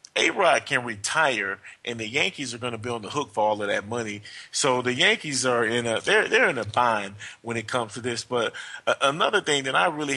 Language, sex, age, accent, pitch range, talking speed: English, male, 30-49, American, 110-130 Hz, 235 wpm